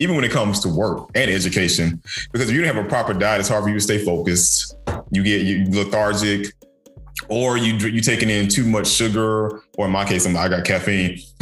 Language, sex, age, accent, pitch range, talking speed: English, male, 20-39, American, 95-110 Hz, 225 wpm